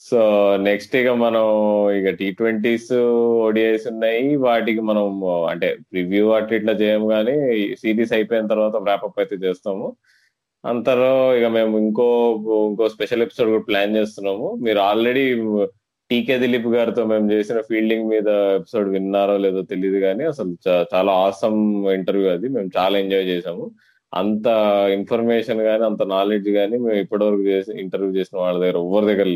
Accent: native